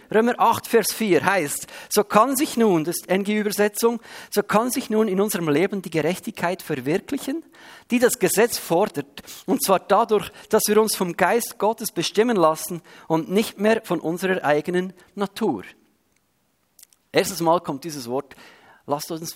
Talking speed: 160 wpm